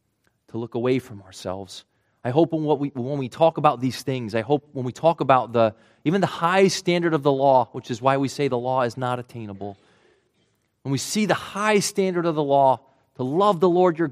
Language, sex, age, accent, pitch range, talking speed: English, male, 30-49, American, 110-150 Hz, 225 wpm